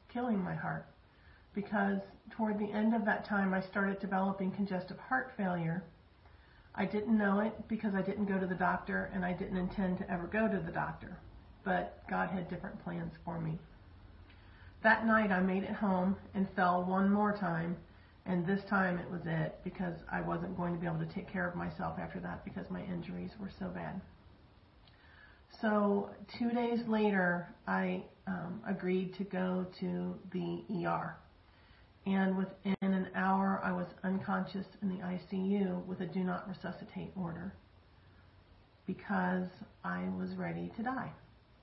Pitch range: 175-200 Hz